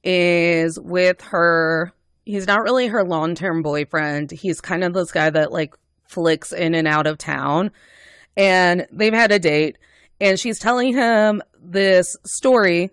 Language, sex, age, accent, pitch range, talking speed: English, female, 20-39, American, 165-200 Hz, 155 wpm